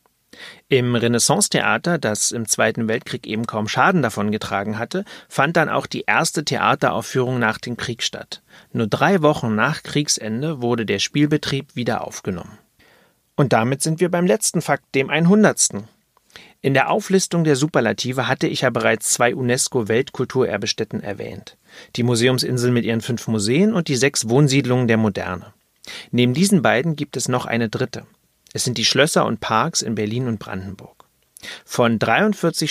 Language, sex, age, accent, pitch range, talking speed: German, male, 40-59, German, 110-150 Hz, 155 wpm